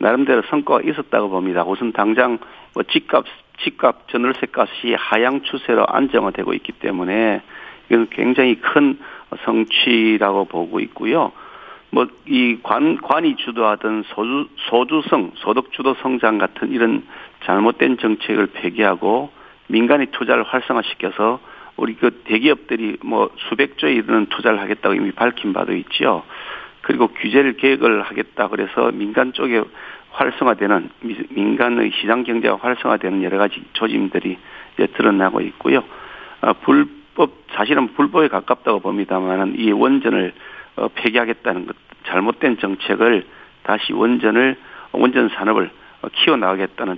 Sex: male